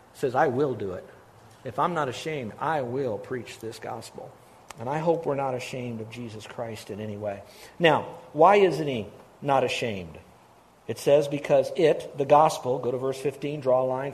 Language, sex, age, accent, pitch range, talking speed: English, male, 50-69, American, 130-155 Hz, 190 wpm